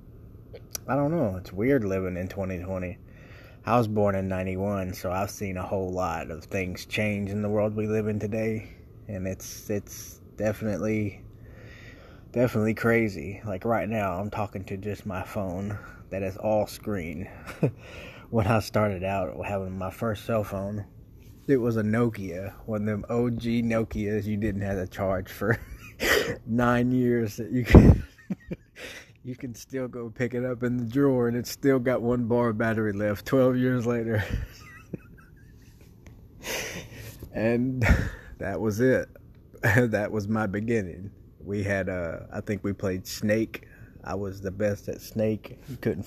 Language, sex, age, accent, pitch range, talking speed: English, male, 20-39, American, 100-115 Hz, 160 wpm